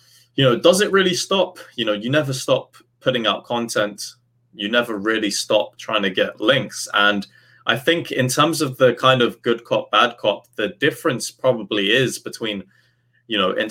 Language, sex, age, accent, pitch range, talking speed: English, male, 20-39, British, 115-130 Hz, 190 wpm